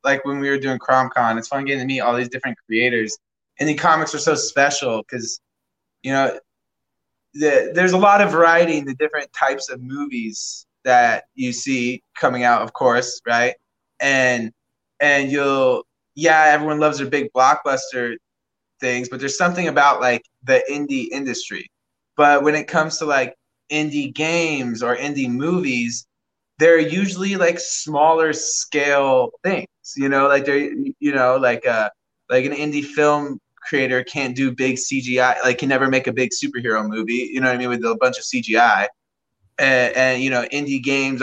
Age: 20-39